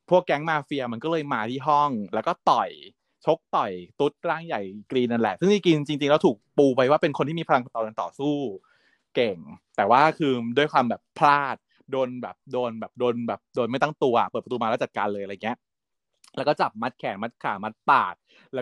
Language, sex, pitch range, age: Thai, male, 120-165 Hz, 20-39